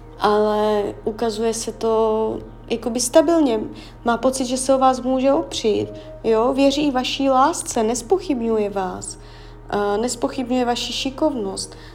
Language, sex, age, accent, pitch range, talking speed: Czech, female, 20-39, native, 205-255 Hz, 110 wpm